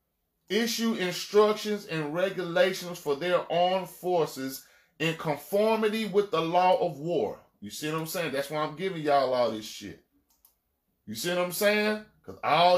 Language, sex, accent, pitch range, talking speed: English, male, American, 160-205 Hz, 165 wpm